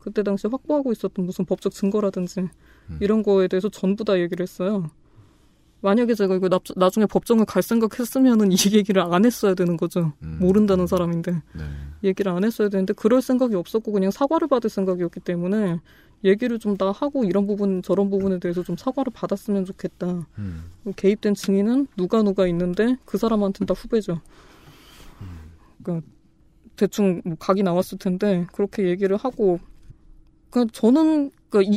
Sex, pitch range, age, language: female, 180-225 Hz, 20-39, Korean